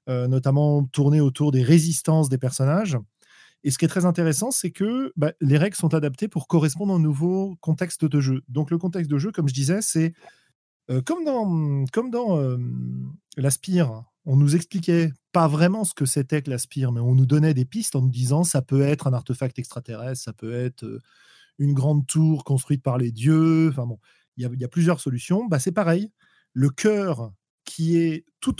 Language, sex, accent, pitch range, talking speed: French, male, French, 130-170 Hz, 195 wpm